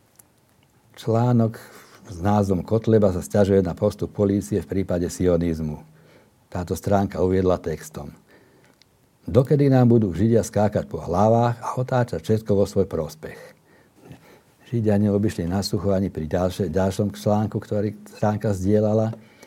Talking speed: 115 wpm